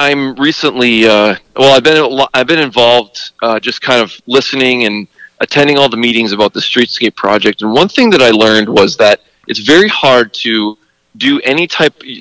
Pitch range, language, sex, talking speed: 110-135 Hz, English, male, 185 wpm